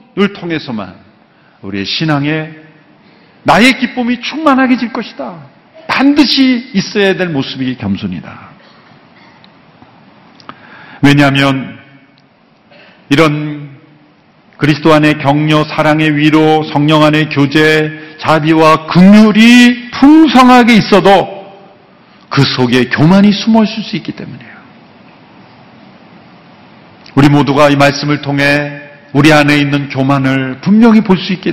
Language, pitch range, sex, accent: Korean, 140-190 Hz, male, native